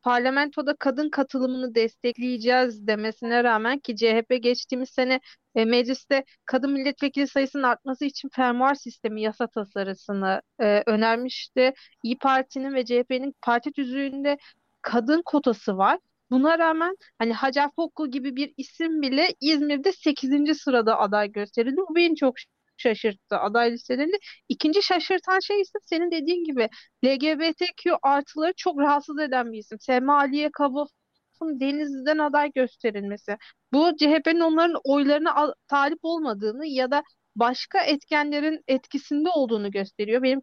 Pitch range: 240-295 Hz